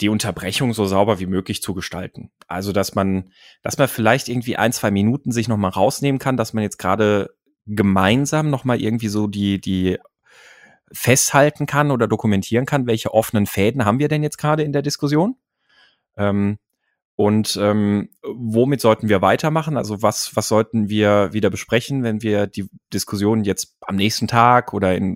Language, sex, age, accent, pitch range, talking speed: German, male, 30-49, German, 100-120 Hz, 170 wpm